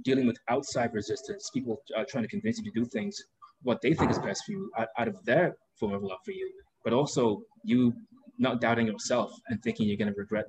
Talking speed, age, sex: 230 wpm, 20-39, male